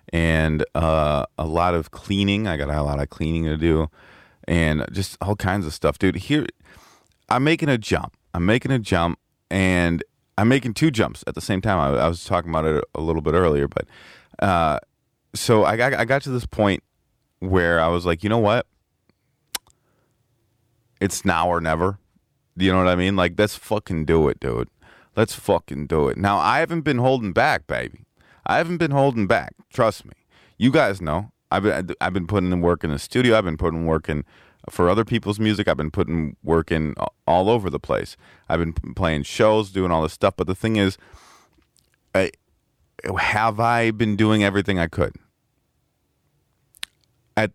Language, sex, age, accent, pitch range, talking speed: English, male, 30-49, American, 80-110 Hz, 190 wpm